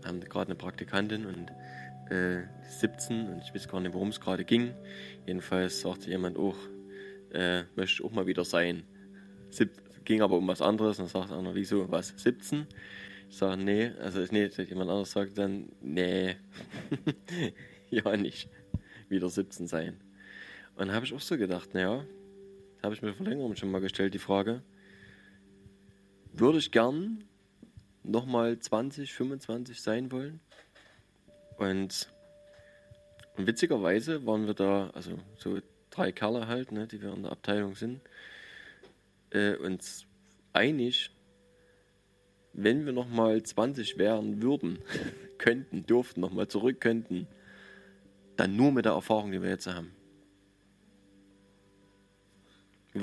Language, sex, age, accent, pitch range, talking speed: German, male, 20-39, German, 95-115 Hz, 140 wpm